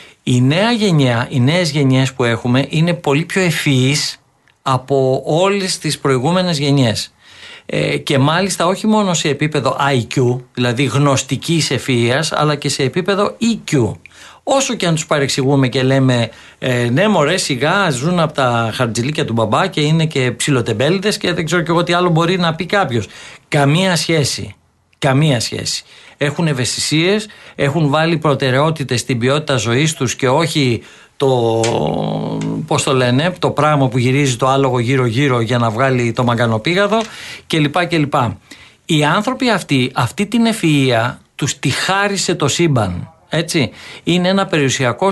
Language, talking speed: Greek, 150 wpm